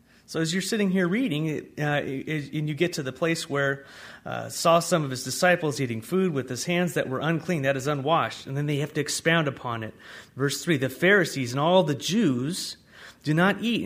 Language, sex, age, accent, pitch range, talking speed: English, male, 30-49, American, 130-170 Hz, 215 wpm